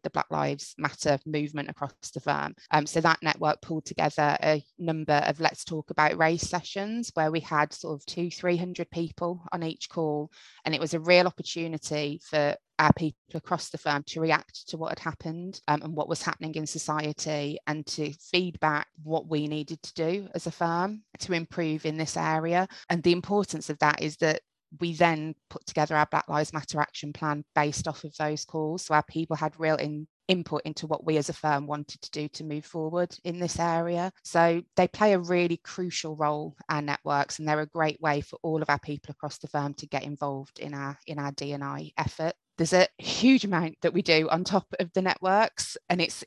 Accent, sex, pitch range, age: British, female, 150-170 Hz, 20-39